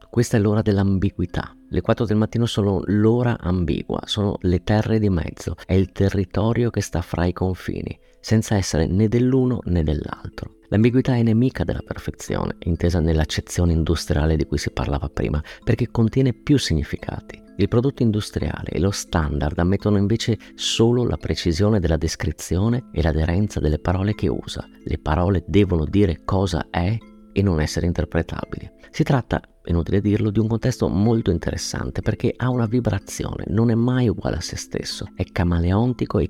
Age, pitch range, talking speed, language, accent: 30-49, 85-115 Hz, 165 wpm, Italian, native